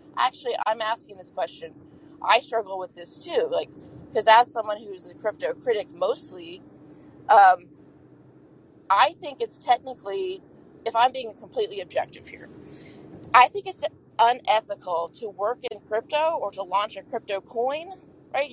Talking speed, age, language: 145 wpm, 20-39, English